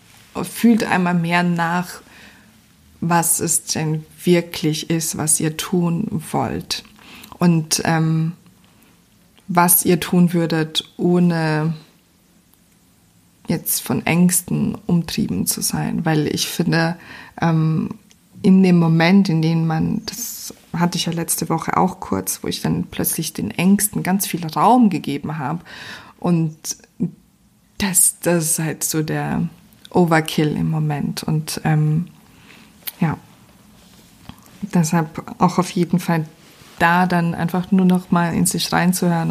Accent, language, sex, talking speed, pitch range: German, German, female, 125 wpm, 165-185 Hz